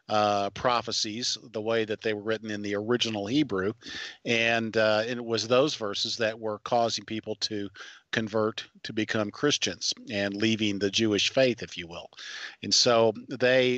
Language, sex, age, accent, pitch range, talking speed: English, male, 50-69, American, 110-125 Hz, 165 wpm